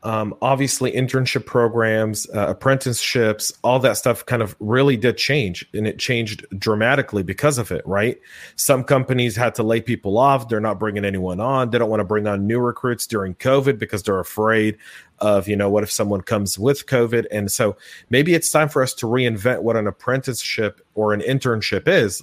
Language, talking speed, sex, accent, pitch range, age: English, 195 wpm, male, American, 105-125 Hz, 30-49